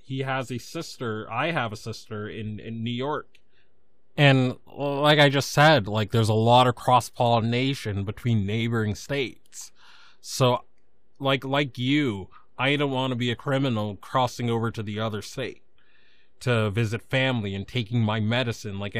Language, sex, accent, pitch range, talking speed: English, male, American, 115-135 Hz, 160 wpm